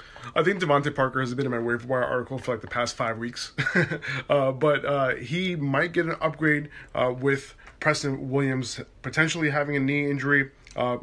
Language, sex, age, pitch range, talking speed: English, male, 20-39, 125-150 Hz, 195 wpm